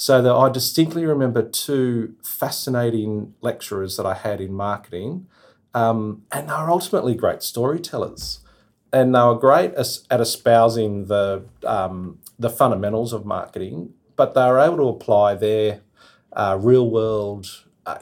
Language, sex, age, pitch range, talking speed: English, male, 40-59, 100-120 Hz, 145 wpm